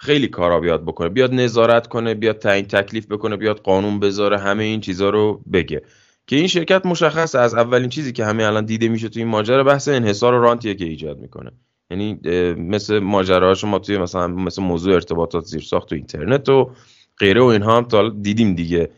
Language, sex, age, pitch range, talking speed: Persian, male, 10-29, 90-130 Hz, 195 wpm